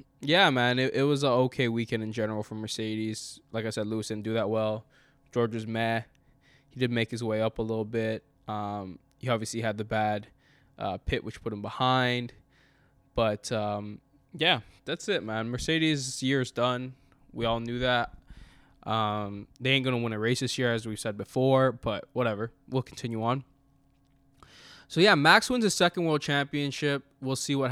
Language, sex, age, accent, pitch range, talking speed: English, male, 10-29, American, 115-140 Hz, 190 wpm